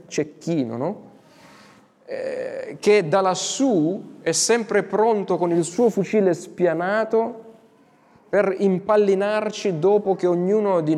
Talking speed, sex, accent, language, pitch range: 100 wpm, male, native, Italian, 150-200 Hz